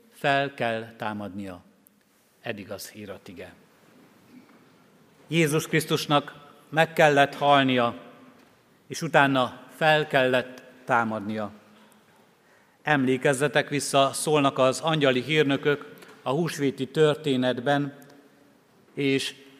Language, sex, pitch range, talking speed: Hungarian, male, 125-155 Hz, 80 wpm